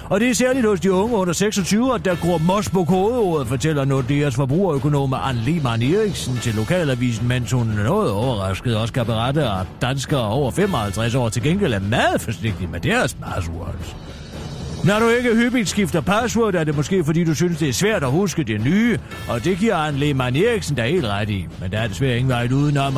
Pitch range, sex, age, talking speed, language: 115-175 Hz, male, 40-59, 210 wpm, Danish